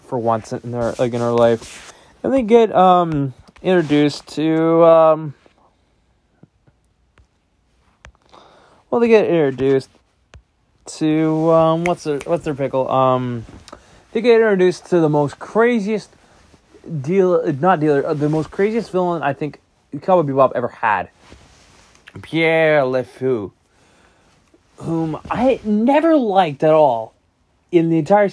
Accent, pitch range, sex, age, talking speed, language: American, 110-160 Hz, male, 20-39, 125 wpm, English